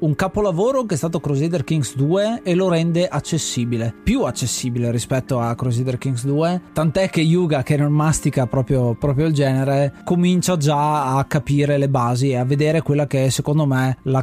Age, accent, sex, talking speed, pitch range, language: 20-39, native, male, 185 wpm, 135-160 Hz, Italian